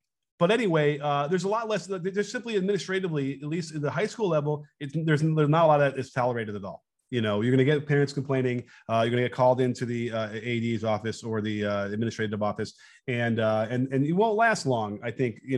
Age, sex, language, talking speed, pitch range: 30-49, male, English, 245 wpm, 125-165 Hz